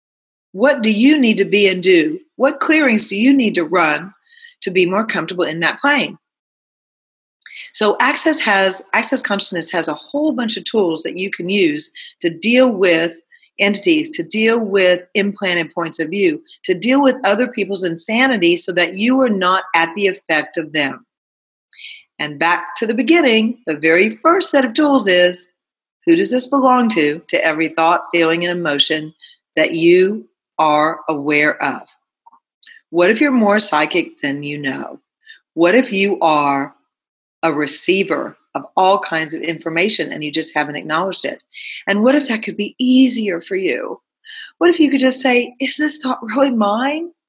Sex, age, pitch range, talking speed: female, 40-59, 170-280 Hz, 175 wpm